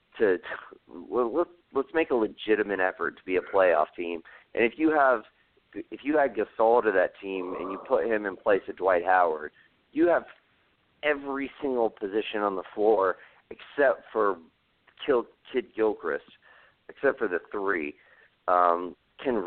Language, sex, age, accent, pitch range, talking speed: English, male, 30-49, American, 90-125 Hz, 165 wpm